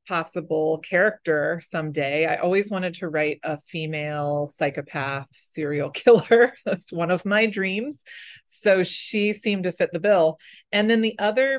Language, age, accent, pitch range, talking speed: English, 30-49, American, 155-195 Hz, 150 wpm